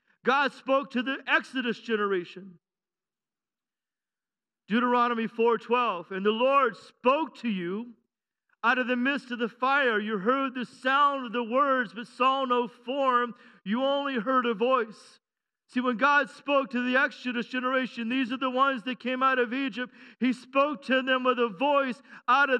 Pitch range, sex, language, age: 210-260 Hz, male, English, 50-69